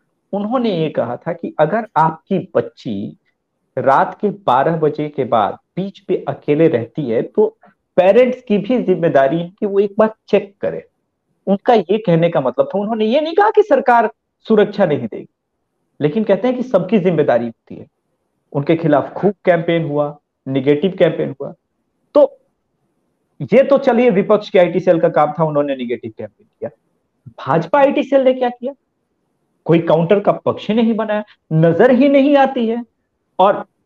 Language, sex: English, male